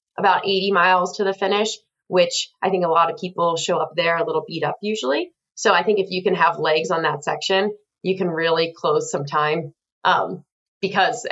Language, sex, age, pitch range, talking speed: English, female, 20-39, 175-205 Hz, 210 wpm